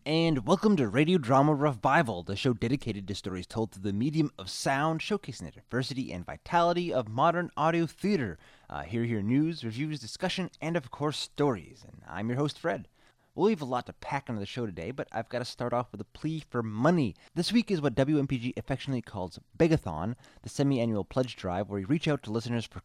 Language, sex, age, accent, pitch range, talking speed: English, male, 20-39, American, 95-140 Hz, 220 wpm